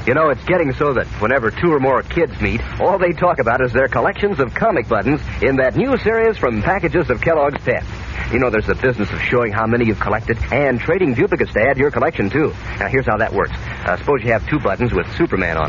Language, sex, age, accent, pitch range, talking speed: English, male, 50-69, American, 105-165 Hz, 245 wpm